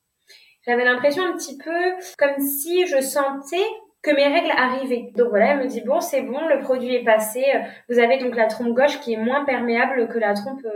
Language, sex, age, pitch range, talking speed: French, female, 20-39, 210-270 Hz, 210 wpm